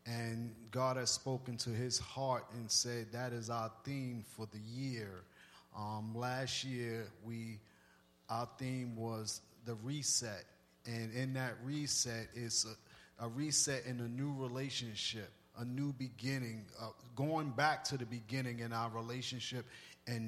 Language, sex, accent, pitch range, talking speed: English, male, American, 115-140 Hz, 150 wpm